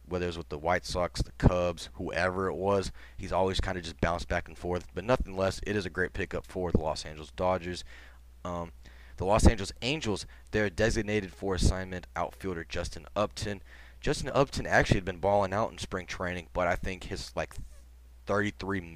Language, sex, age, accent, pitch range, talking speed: English, male, 20-39, American, 85-95 Hz, 195 wpm